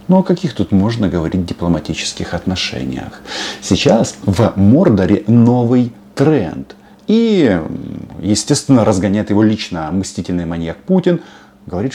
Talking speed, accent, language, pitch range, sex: 110 wpm, native, Russian, 95-150 Hz, male